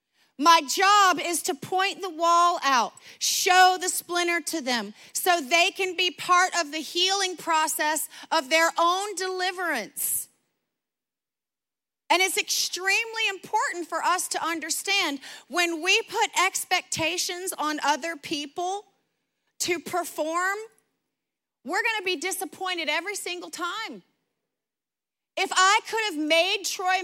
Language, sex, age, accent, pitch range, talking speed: English, female, 40-59, American, 330-420 Hz, 125 wpm